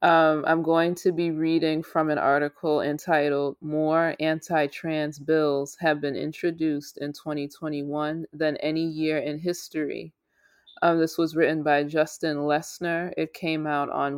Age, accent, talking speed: 20-39, American, 145 wpm